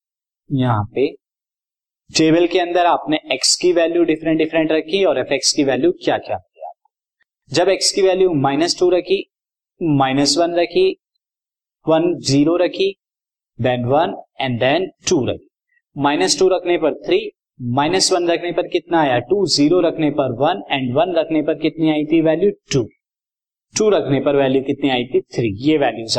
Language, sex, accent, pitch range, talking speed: Hindi, male, native, 145-190 Hz, 160 wpm